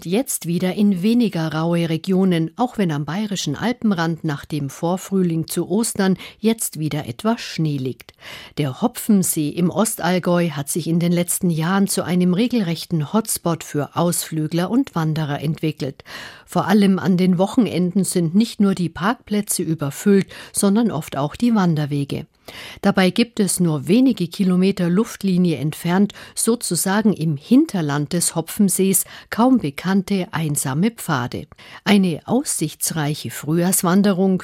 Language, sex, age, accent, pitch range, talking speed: German, female, 50-69, German, 155-200 Hz, 130 wpm